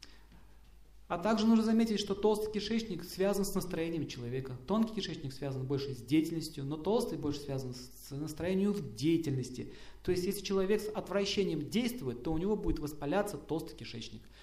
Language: Russian